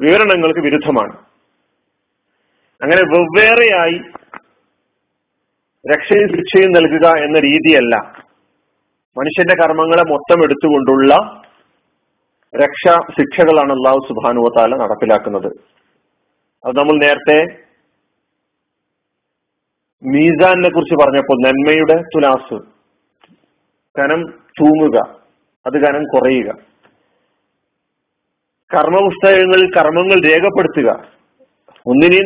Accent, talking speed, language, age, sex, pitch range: native, 65 wpm, Malayalam, 40-59, male, 145-190 Hz